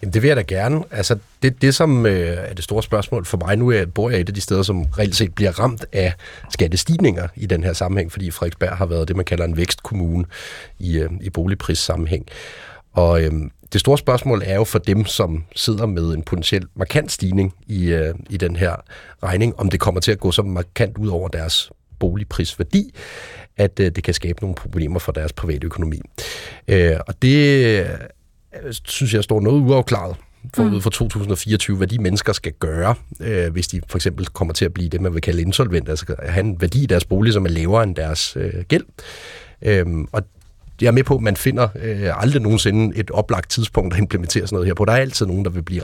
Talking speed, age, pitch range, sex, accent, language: 215 wpm, 30-49, 85-110 Hz, male, native, Danish